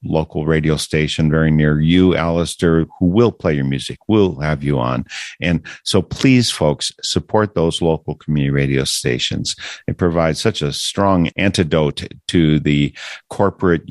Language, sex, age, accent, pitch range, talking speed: English, male, 50-69, American, 75-90 Hz, 150 wpm